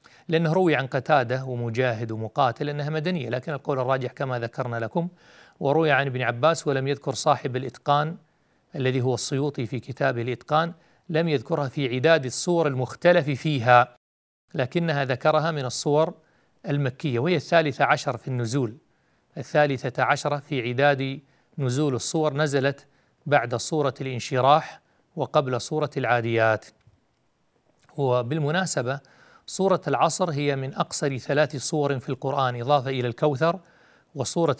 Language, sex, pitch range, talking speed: Arabic, male, 130-160 Hz, 125 wpm